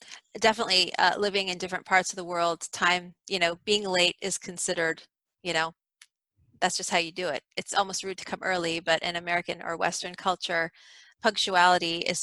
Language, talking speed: English, 185 wpm